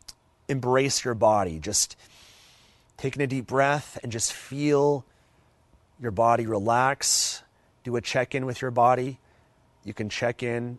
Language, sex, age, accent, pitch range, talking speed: English, male, 30-49, American, 105-120 Hz, 135 wpm